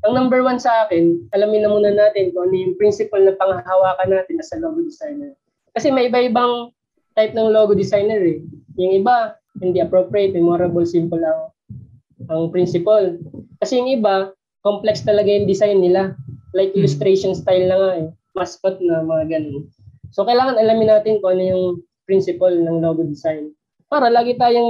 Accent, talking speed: native, 170 wpm